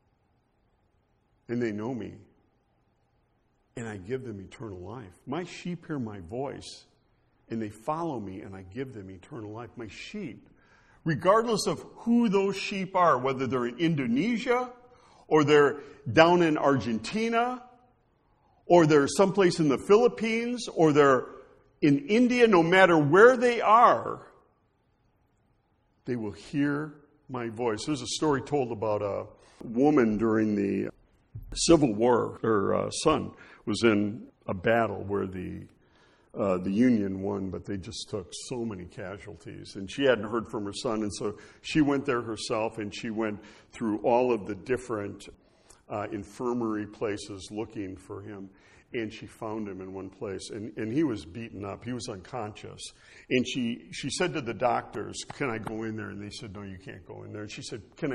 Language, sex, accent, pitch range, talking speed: English, male, American, 105-150 Hz, 165 wpm